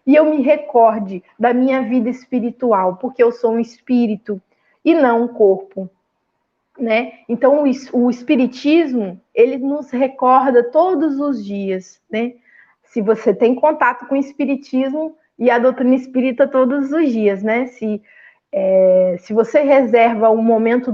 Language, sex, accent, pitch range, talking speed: Portuguese, female, Brazilian, 210-260 Hz, 145 wpm